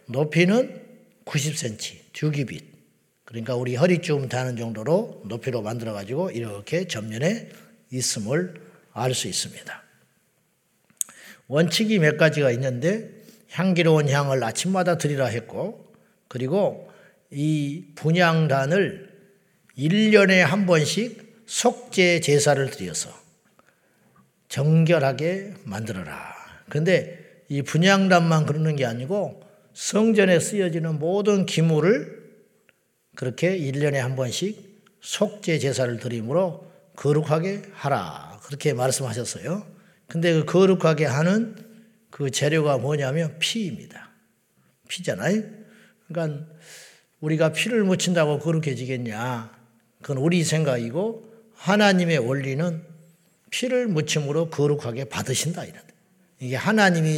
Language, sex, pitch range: Korean, male, 140-190 Hz